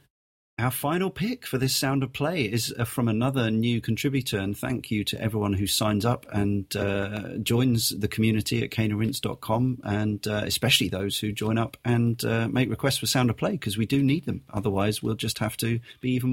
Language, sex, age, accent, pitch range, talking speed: English, male, 40-59, British, 105-125 Hz, 200 wpm